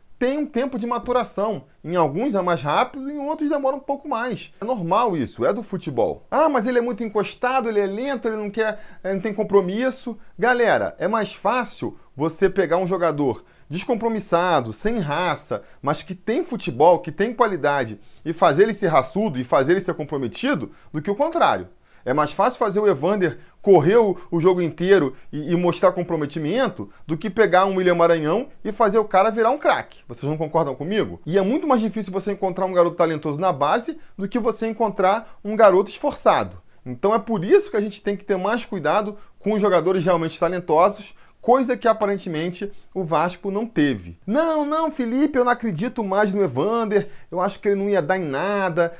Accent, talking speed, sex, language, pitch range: Brazilian, 195 wpm, male, Portuguese, 170-225 Hz